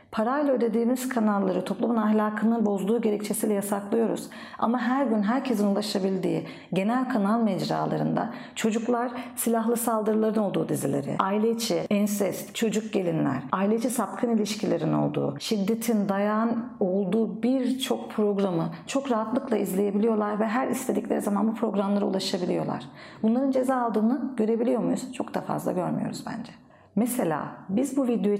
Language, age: Turkish, 50-69